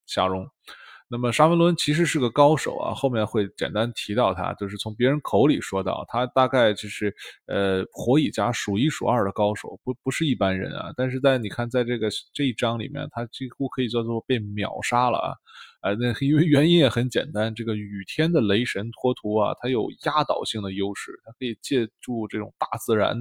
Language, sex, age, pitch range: Chinese, male, 20-39, 100-125 Hz